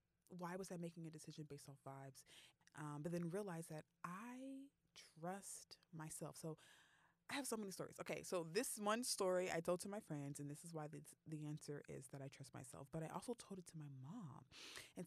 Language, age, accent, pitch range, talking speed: English, 20-39, American, 155-190 Hz, 215 wpm